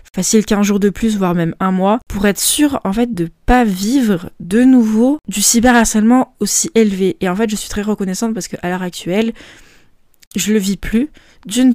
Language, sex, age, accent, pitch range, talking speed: French, female, 20-39, French, 175-210 Hz, 205 wpm